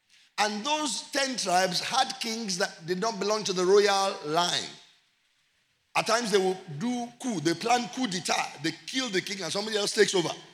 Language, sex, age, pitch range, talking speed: English, male, 50-69, 165-205 Hz, 190 wpm